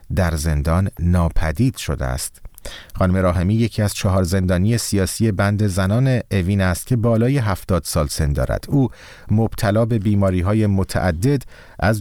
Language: Persian